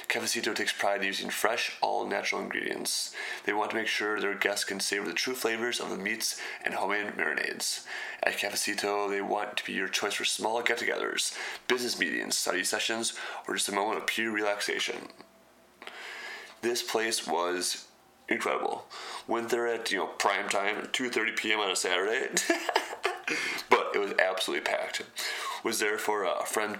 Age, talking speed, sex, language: 30-49, 160 wpm, male, English